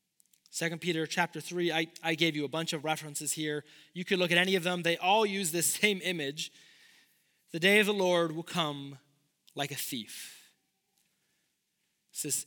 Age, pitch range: 30-49, 155-195 Hz